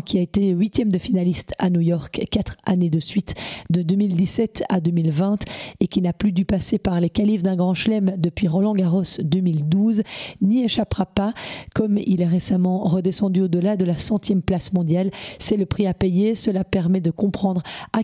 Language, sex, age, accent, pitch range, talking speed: French, female, 40-59, French, 180-210 Hz, 185 wpm